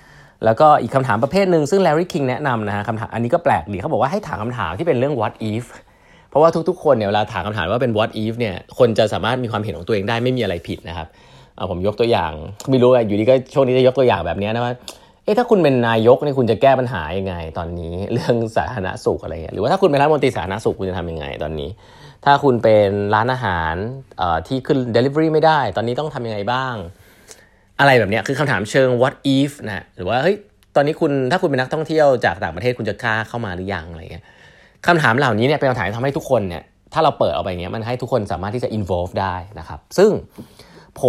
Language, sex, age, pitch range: Thai, male, 20-39, 100-135 Hz